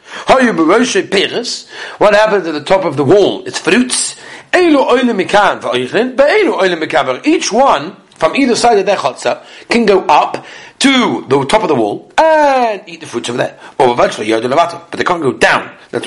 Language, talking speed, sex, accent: English, 145 wpm, male, British